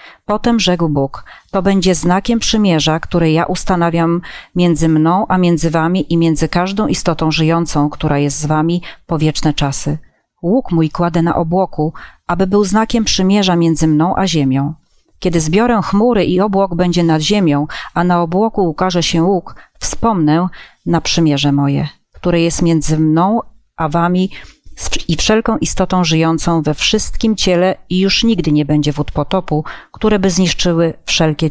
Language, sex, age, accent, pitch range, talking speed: Polish, female, 30-49, native, 155-190 Hz, 155 wpm